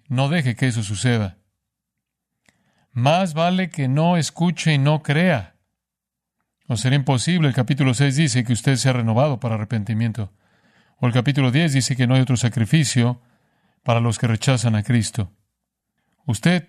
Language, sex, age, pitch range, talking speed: Spanish, male, 40-59, 115-145 Hz, 160 wpm